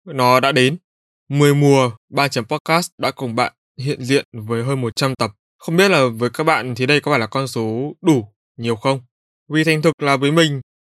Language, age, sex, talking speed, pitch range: Vietnamese, 20-39, male, 215 wpm, 125-160 Hz